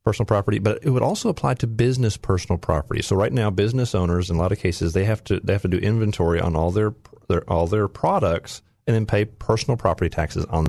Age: 40-59